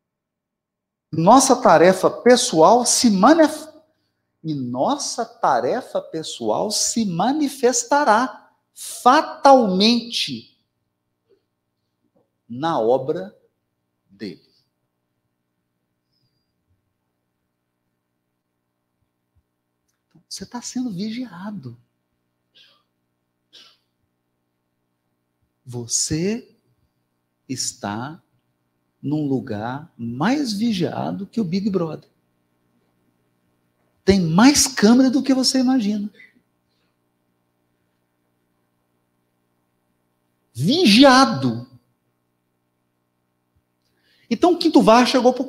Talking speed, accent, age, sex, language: 55 wpm, Brazilian, 50-69, male, Portuguese